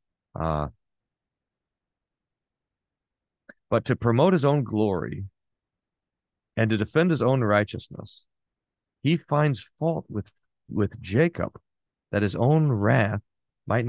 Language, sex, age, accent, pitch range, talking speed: English, male, 40-59, American, 90-125 Hz, 110 wpm